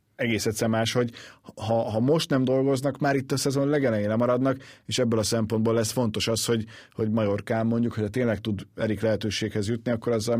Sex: male